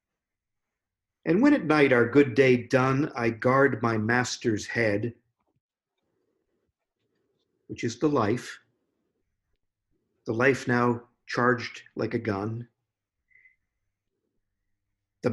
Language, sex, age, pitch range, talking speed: English, male, 50-69, 105-125 Hz, 100 wpm